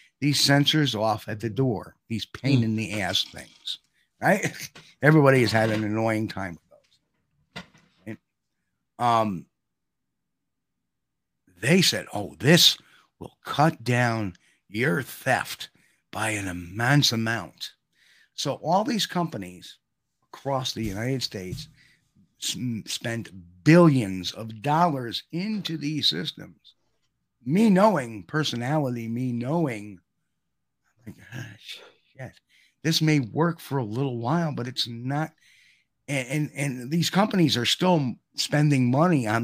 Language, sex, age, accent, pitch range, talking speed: English, male, 60-79, American, 115-155 Hz, 115 wpm